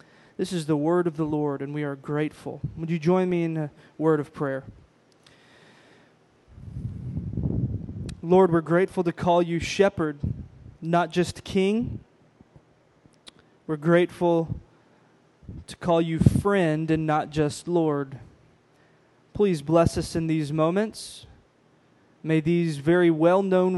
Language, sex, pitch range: English, male, 145-175 Hz